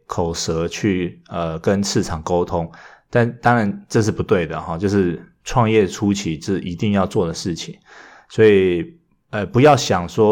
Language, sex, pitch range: Chinese, male, 90-115 Hz